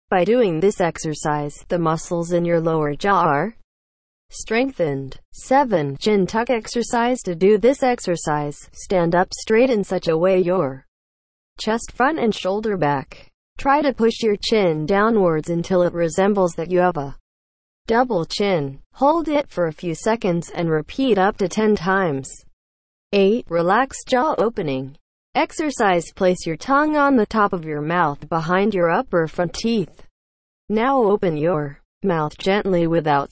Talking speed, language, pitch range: 155 wpm, English, 155-205 Hz